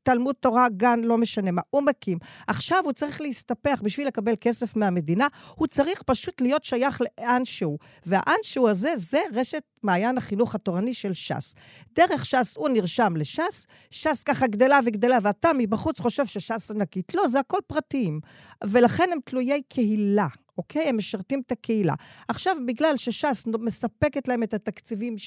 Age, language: 50-69, Hebrew